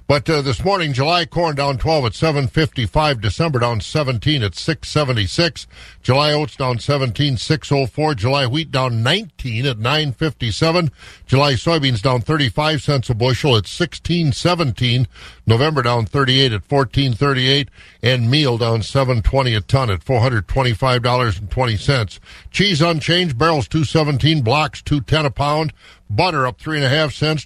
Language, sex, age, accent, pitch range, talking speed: English, male, 50-69, American, 125-160 Hz, 175 wpm